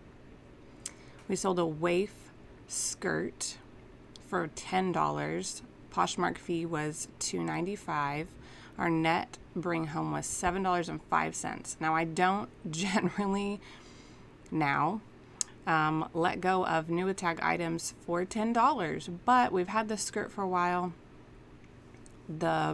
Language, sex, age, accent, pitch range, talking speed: English, female, 30-49, American, 155-185 Hz, 105 wpm